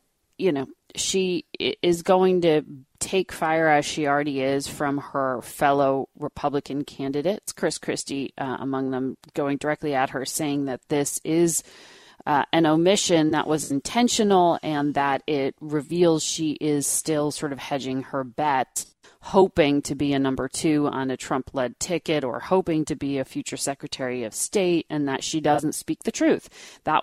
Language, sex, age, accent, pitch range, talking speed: English, female, 30-49, American, 140-165 Hz, 170 wpm